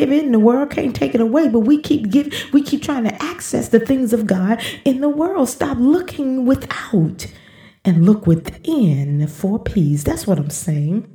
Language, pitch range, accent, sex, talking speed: English, 195-275 Hz, American, female, 190 wpm